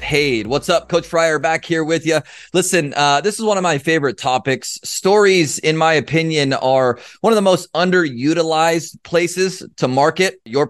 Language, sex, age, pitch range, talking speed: English, male, 30-49, 135-170 Hz, 180 wpm